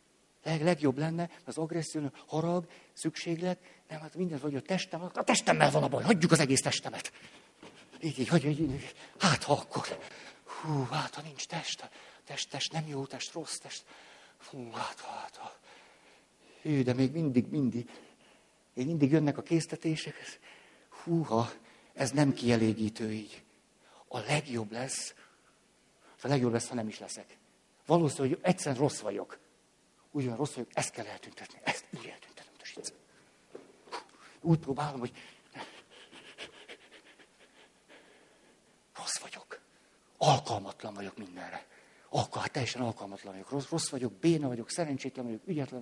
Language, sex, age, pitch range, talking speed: Hungarian, male, 60-79, 125-160 Hz, 135 wpm